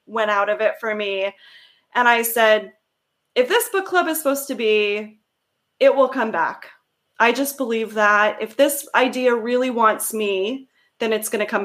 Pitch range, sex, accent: 215-260 Hz, female, American